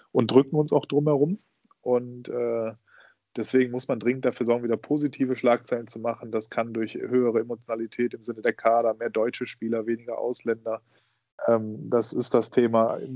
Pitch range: 115-130 Hz